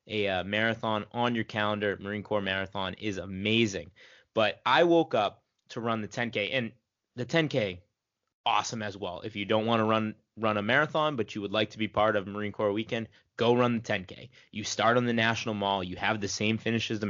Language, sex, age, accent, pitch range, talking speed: English, male, 20-39, American, 100-120 Hz, 220 wpm